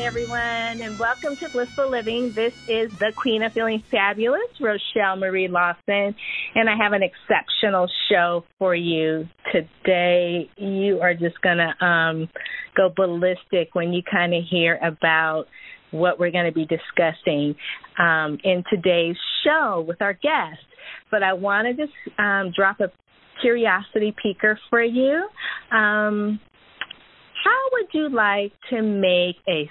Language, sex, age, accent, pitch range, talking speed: English, female, 30-49, American, 180-230 Hz, 140 wpm